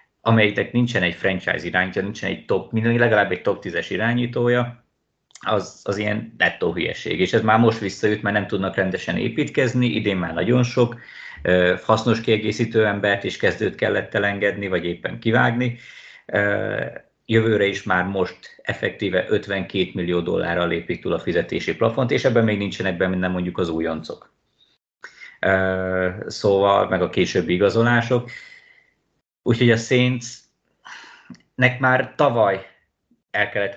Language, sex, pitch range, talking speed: Hungarian, male, 95-115 Hz, 140 wpm